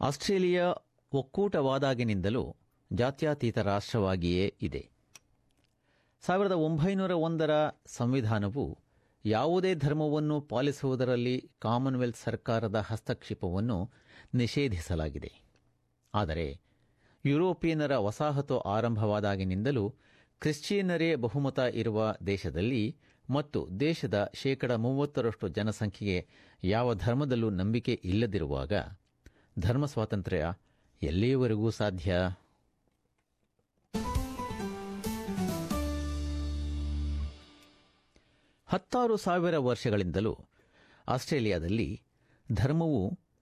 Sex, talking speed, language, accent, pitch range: male, 55 wpm, Kannada, native, 100-145 Hz